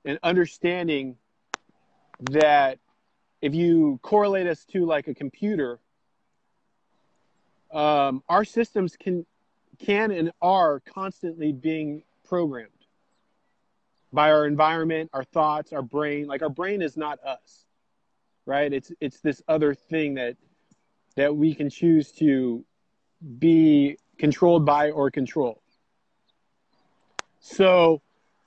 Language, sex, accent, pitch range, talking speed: English, male, American, 145-175 Hz, 110 wpm